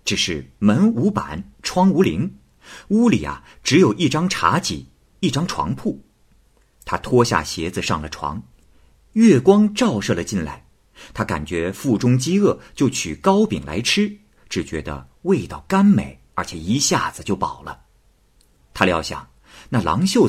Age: 50-69